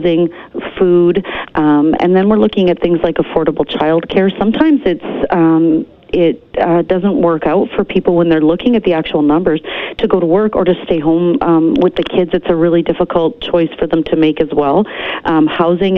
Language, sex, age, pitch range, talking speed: English, female, 40-59, 150-180 Hz, 200 wpm